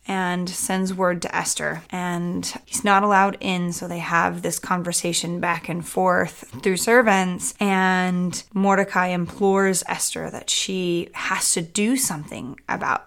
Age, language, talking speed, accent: 20-39, English, 140 wpm, American